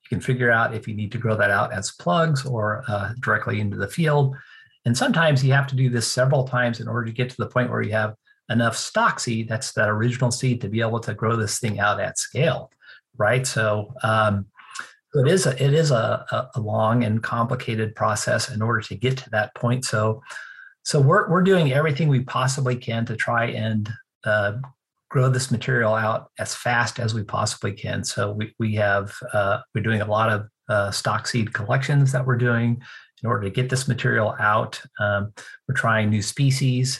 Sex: male